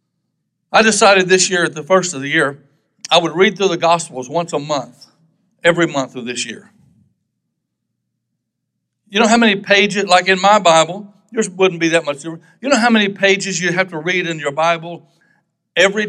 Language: English